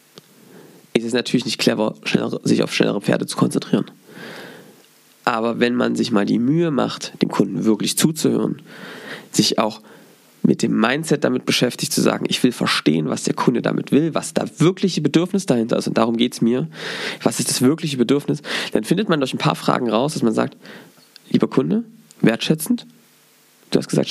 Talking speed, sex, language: 180 wpm, male, German